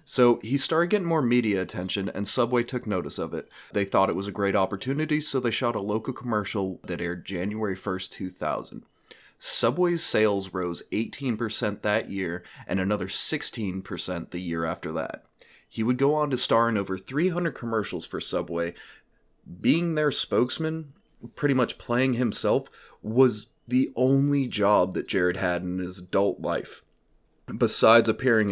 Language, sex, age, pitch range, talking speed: English, male, 30-49, 95-125 Hz, 160 wpm